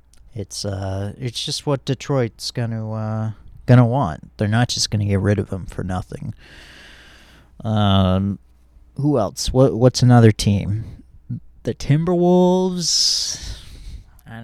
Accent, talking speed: American, 125 wpm